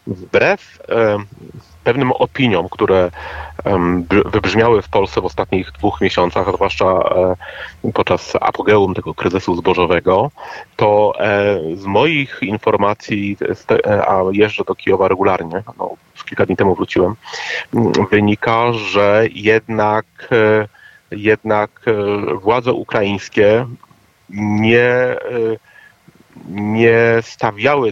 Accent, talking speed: native, 85 wpm